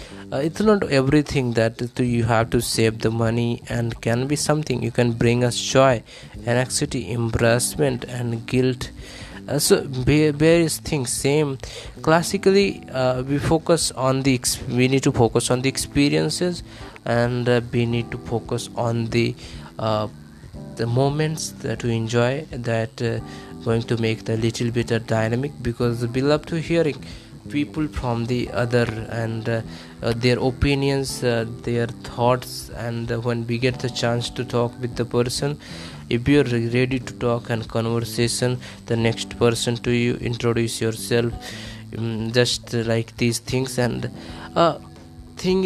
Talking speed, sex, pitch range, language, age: 160 wpm, male, 115-135 Hz, English, 20-39